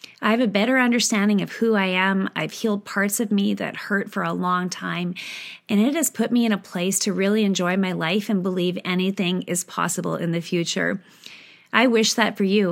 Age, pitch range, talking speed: 30-49, 180-215 Hz, 215 wpm